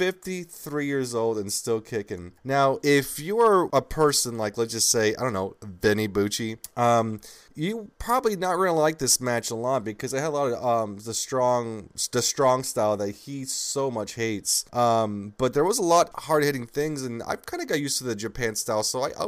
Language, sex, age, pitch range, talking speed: English, male, 20-39, 115-145 Hz, 220 wpm